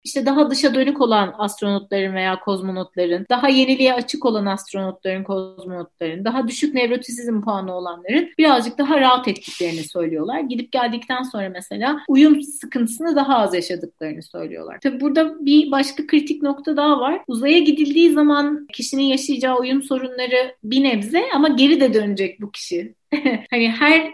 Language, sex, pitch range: Turkish, female, 210-275 Hz